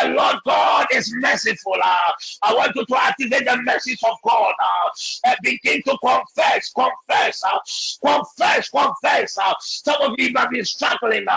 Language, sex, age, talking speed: English, male, 50-69, 165 wpm